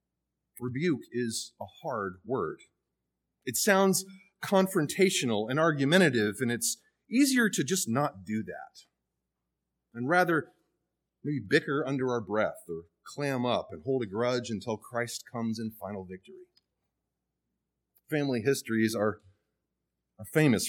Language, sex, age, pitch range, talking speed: English, male, 30-49, 115-180 Hz, 125 wpm